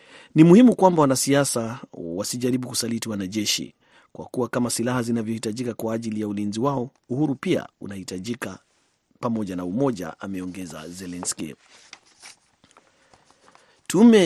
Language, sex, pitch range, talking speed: Swahili, male, 110-130 Hz, 110 wpm